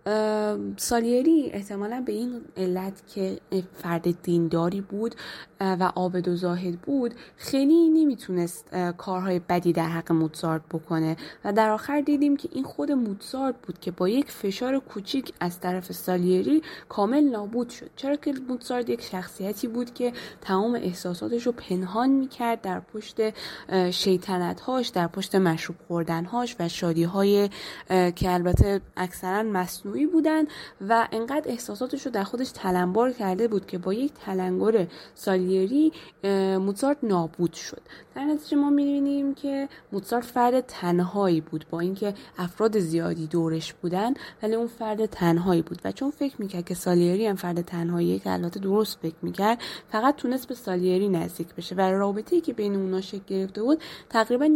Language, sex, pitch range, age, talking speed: Persian, female, 180-250 Hz, 10-29, 145 wpm